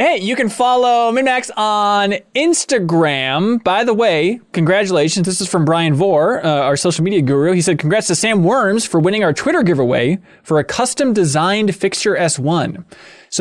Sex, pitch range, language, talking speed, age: male, 150-200 Hz, English, 170 wpm, 20-39